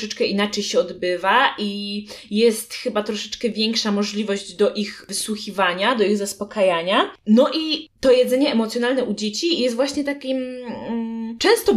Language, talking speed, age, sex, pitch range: Polish, 140 wpm, 20-39, female, 205-250 Hz